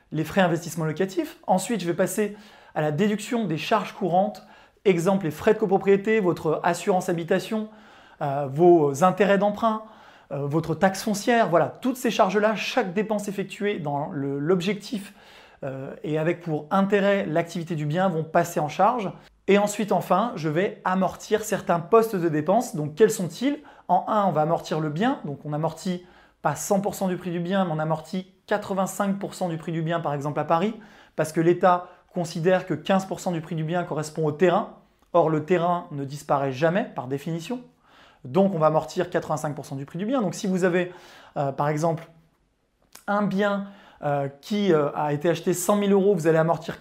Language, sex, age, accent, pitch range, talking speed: French, male, 20-39, French, 165-205 Hz, 180 wpm